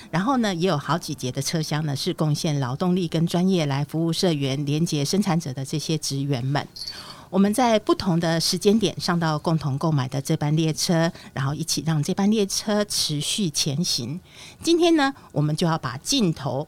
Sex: female